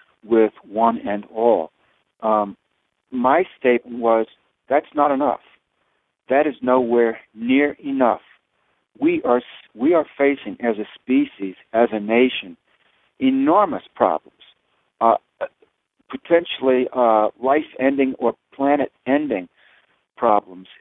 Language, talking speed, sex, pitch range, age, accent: English, 105 wpm, male, 110-130 Hz, 60-79, American